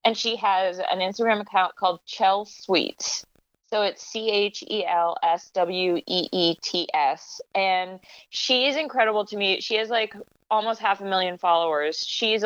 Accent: American